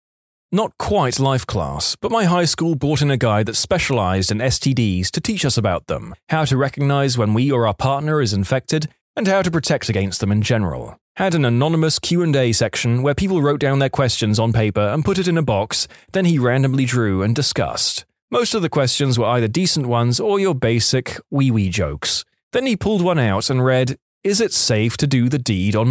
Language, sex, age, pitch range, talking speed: English, male, 30-49, 115-155 Hz, 210 wpm